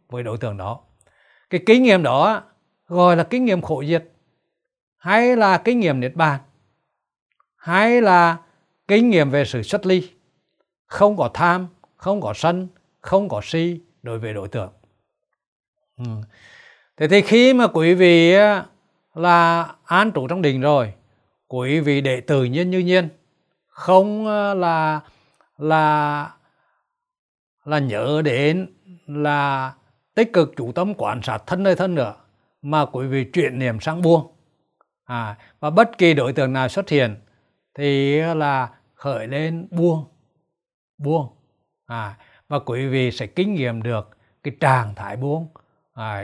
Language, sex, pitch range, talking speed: Vietnamese, male, 120-175 Hz, 145 wpm